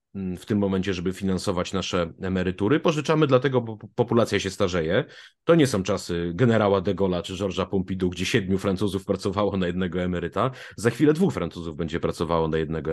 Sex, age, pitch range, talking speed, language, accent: male, 30-49, 95-125 Hz, 175 wpm, Polish, native